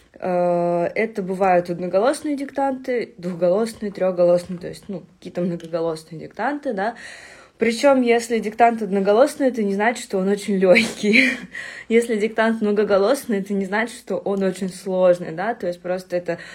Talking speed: 140 wpm